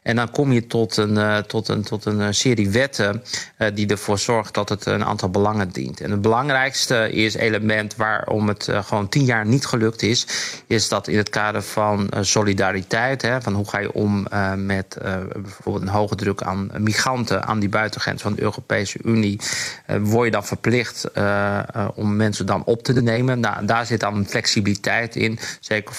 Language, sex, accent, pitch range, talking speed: Dutch, male, Dutch, 100-115 Hz, 180 wpm